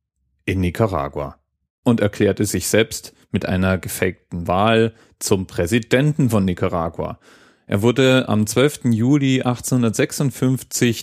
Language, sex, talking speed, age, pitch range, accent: German, male, 110 wpm, 30-49, 95-115 Hz, German